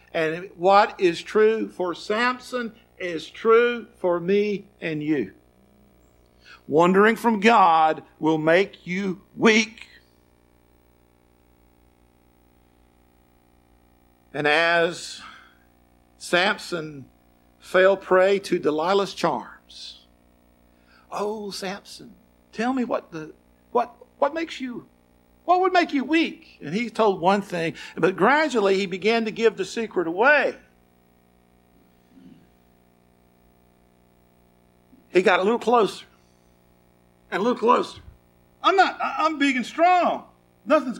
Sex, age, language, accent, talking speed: male, 50-69, English, American, 105 wpm